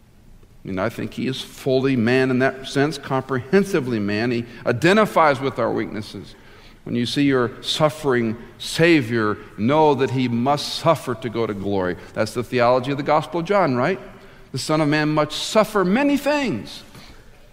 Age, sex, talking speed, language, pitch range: 50-69, male, 170 wpm, English, 105-135 Hz